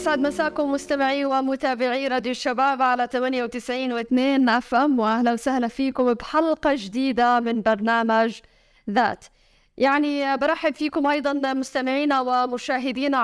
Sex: female